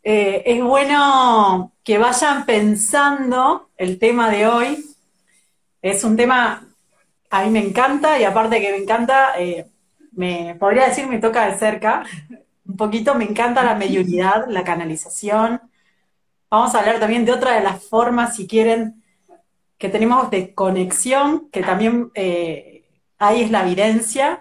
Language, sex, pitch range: Spanish, female, 200-260 Hz